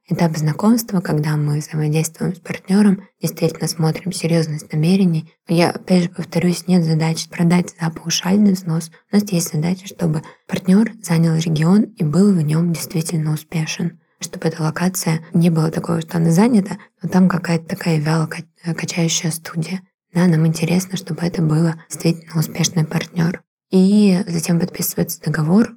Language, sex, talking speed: Russian, female, 145 wpm